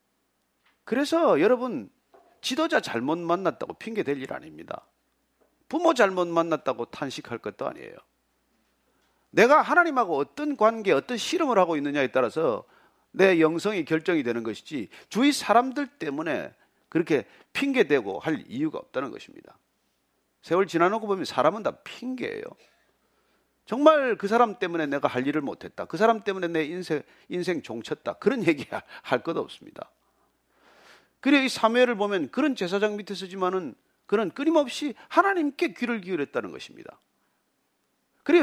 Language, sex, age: Korean, male, 40-59